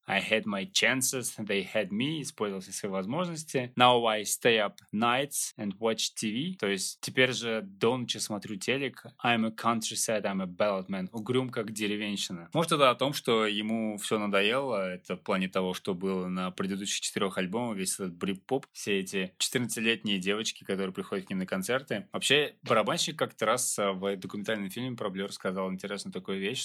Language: Russian